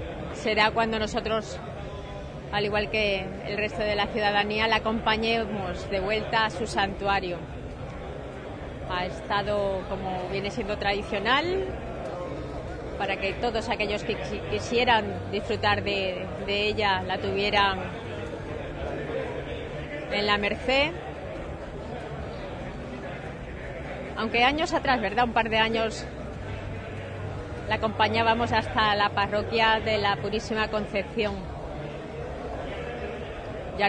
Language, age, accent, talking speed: Spanish, 30-49, Spanish, 105 wpm